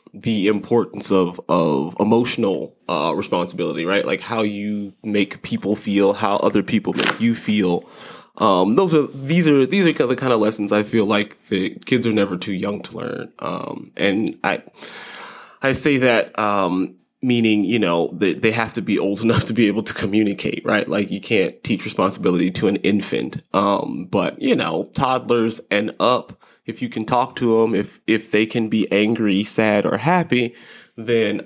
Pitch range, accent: 100-120 Hz, American